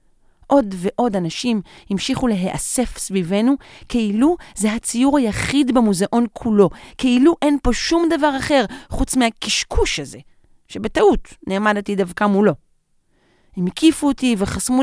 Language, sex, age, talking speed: Hebrew, female, 40-59, 115 wpm